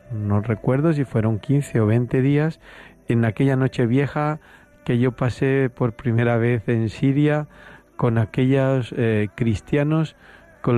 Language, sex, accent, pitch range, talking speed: Spanish, male, Spanish, 110-140 Hz, 140 wpm